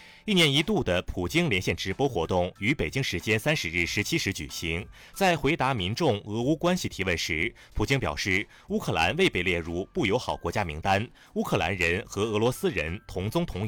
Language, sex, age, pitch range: Chinese, male, 30-49, 90-135 Hz